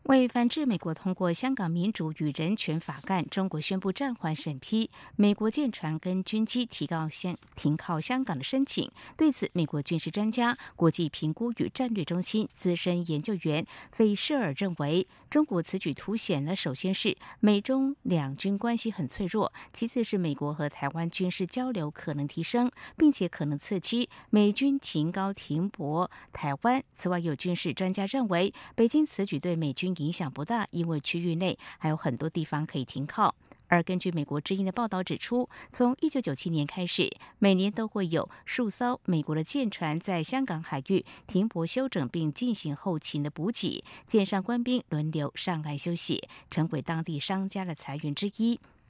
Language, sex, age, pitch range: Chinese, female, 50-69, 160-225 Hz